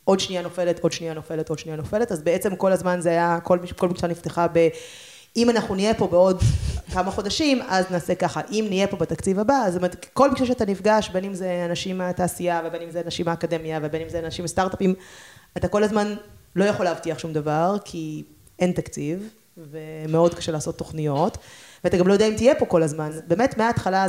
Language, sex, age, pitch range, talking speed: Hebrew, female, 20-39, 165-195 Hz, 170 wpm